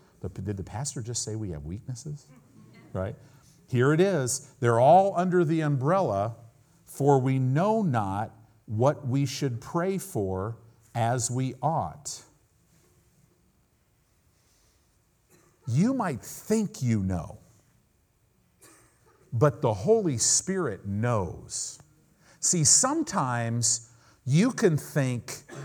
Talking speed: 105 wpm